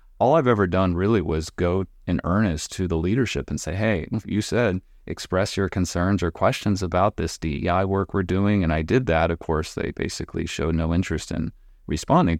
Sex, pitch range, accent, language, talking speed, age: male, 80-100 Hz, American, English, 200 wpm, 30-49